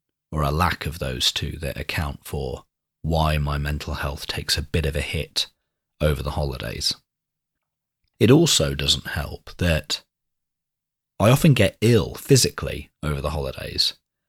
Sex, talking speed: male, 145 wpm